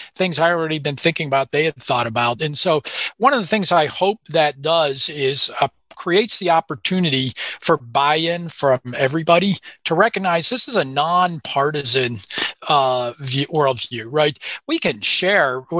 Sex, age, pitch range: male, 40-59, 135-170 Hz